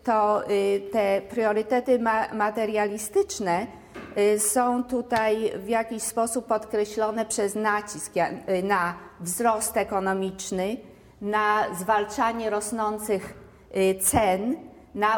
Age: 40-59